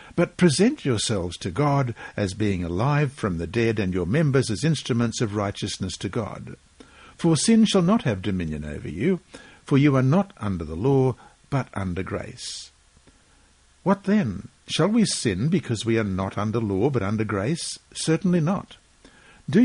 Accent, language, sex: Australian, English, male